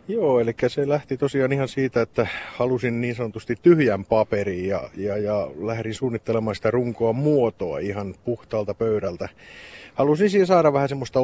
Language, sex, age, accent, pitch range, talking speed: Finnish, male, 30-49, native, 115-140 Hz, 155 wpm